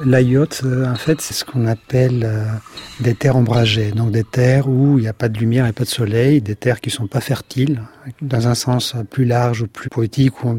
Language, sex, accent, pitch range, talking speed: French, male, French, 120-140 Hz, 225 wpm